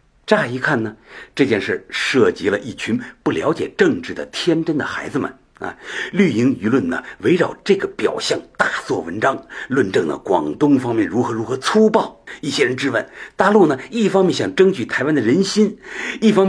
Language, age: Chinese, 60-79